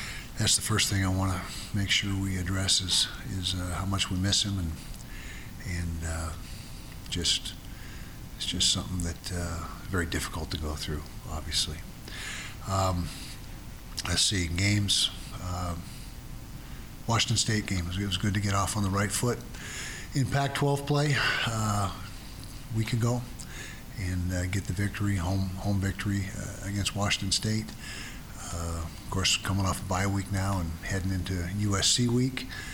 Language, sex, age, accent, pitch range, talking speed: English, male, 60-79, American, 90-105 Hz, 160 wpm